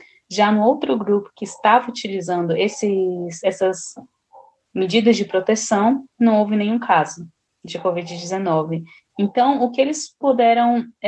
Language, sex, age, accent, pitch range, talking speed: Portuguese, female, 10-29, Brazilian, 195-240 Hz, 120 wpm